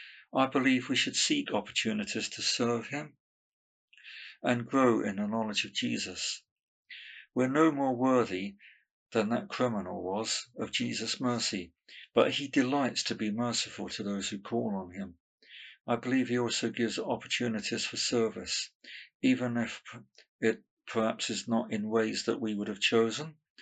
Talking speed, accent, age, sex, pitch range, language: 150 wpm, British, 50-69, male, 105-125 Hz, English